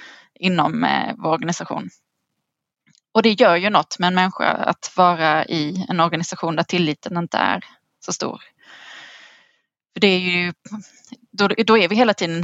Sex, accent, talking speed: female, native, 165 wpm